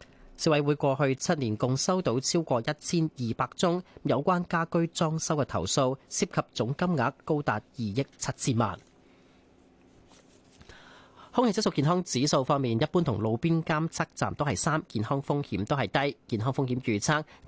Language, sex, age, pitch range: Chinese, male, 30-49, 115-155 Hz